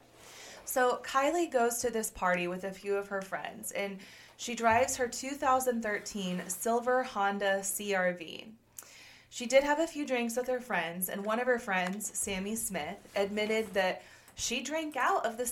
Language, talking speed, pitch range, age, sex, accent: English, 165 wpm, 185-235 Hz, 20-39, female, American